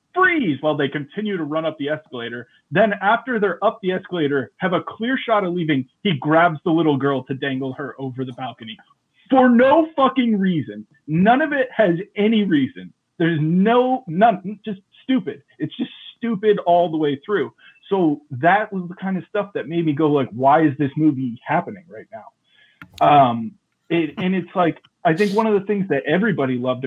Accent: American